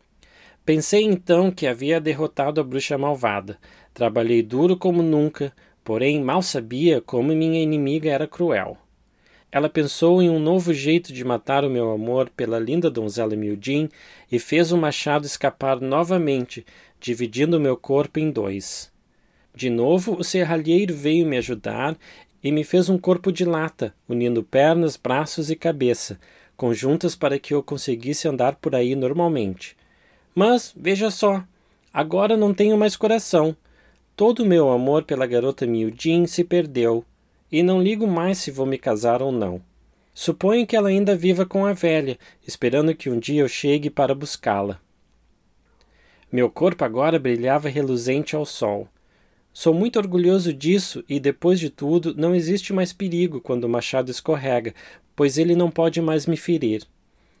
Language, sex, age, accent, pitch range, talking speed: English, male, 20-39, Brazilian, 125-175 Hz, 155 wpm